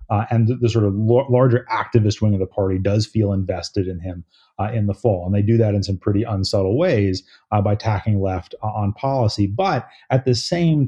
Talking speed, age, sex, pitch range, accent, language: 220 wpm, 30-49, male, 100-125 Hz, American, English